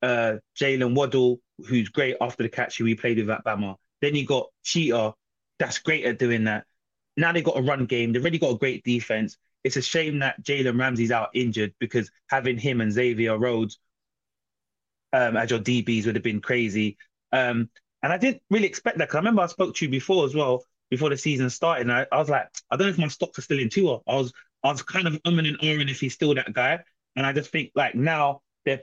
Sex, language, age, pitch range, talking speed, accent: male, English, 20-39, 120-155 Hz, 235 wpm, British